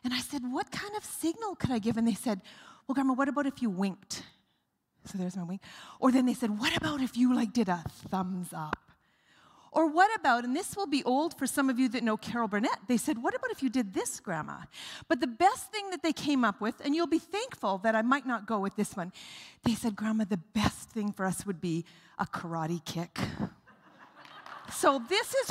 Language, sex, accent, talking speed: English, female, American, 235 wpm